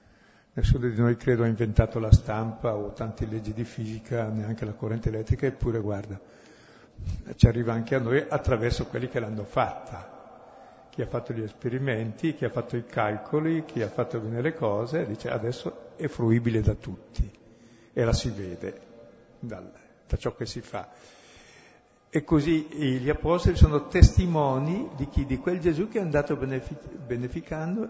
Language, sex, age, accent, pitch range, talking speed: Italian, male, 60-79, native, 115-150 Hz, 165 wpm